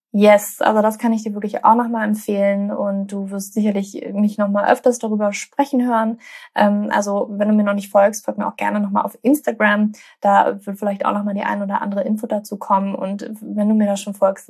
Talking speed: 220 wpm